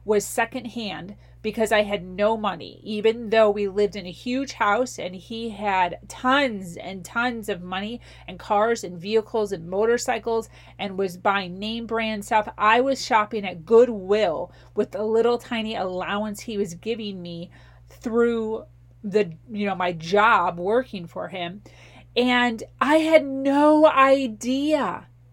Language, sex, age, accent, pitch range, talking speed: English, female, 30-49, American, 185-240 Hz, 150 wpm